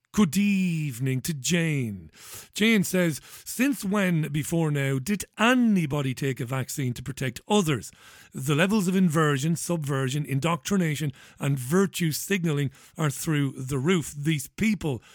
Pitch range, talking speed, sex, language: 135-185 Hz, 130 wpm, male, English